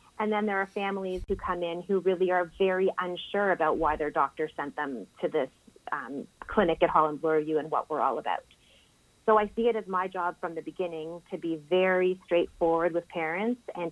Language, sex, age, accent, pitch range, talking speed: English, female, 30-49, American, 160-190 Hz, 205 wpm